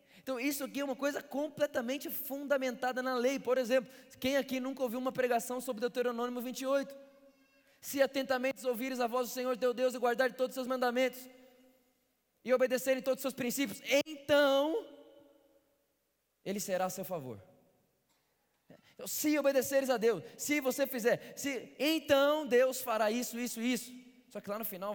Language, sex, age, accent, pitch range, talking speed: Portuguese, male, 20-39, Brazilian, 220-260 Hz, 165 wpm